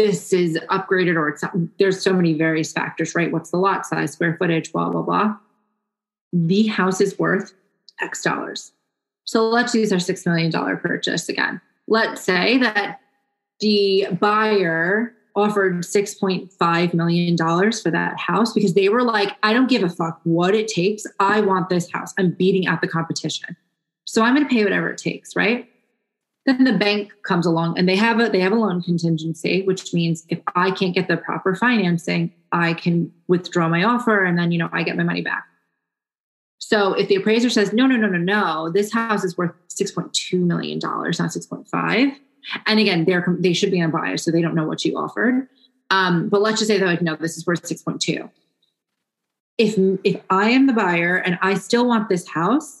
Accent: American